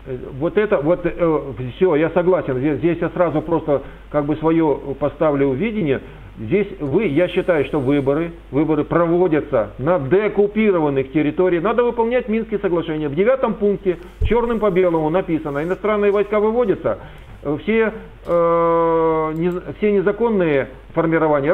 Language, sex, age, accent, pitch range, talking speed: Ukrainian, male, 50-69, native, 155-205 Hz, 135 wpm